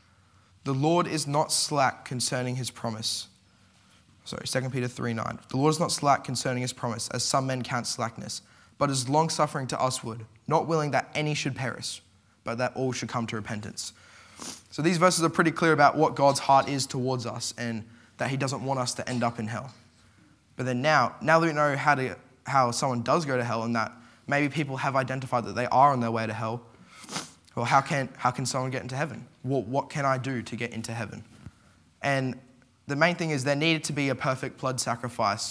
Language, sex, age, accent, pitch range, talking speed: English, male, 10-29, Australian, 115-140 Hz, 220 wpm